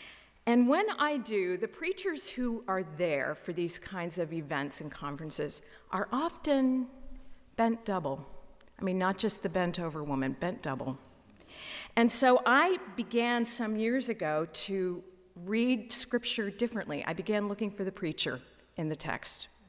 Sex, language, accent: female, English, American